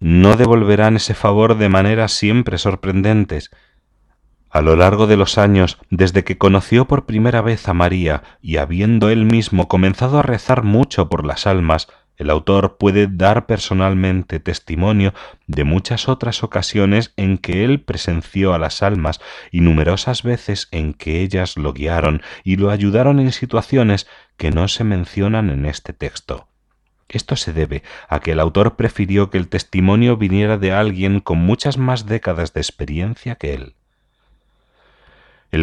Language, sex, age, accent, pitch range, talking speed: Spanish, male, 30-49, Spanish, 85-110 Hz, 155 wpm